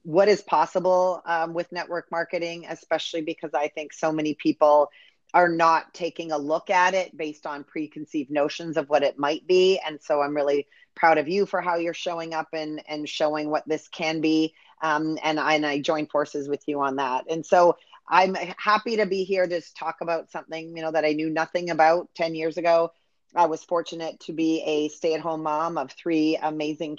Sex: female